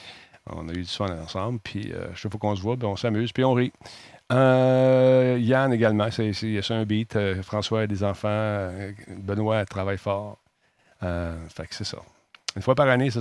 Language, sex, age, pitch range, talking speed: French, male, 50-69, 100-115 Hz, 200 wpm